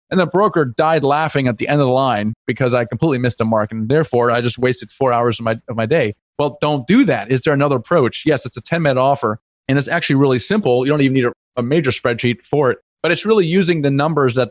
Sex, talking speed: male, 265 wpm